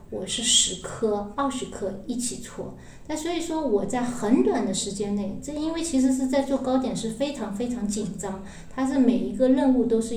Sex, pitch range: female, 200-255 Hz